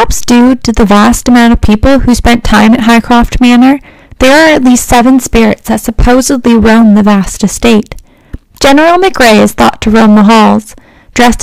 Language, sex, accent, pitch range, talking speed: English, female, American, 215-255 Hz, 185 wpm